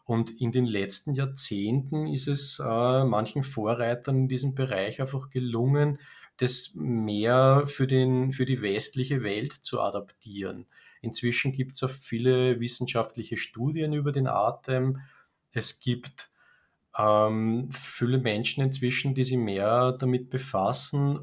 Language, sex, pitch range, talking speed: German, male, 115-135 Hz, 130 wpm